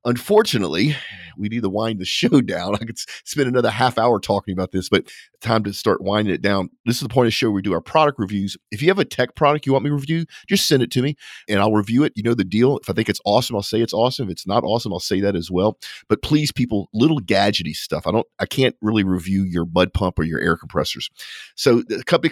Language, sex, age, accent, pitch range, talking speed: English, male, 40-59, American, 100-135 Hz, 265 wpm